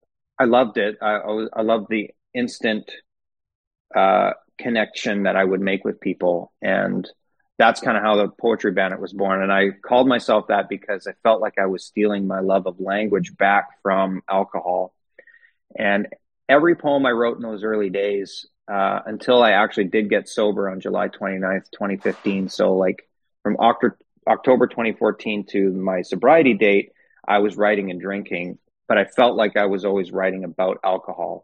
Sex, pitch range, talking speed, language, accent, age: male, 95-110 Hz, 170 wpm, English, American, 30-49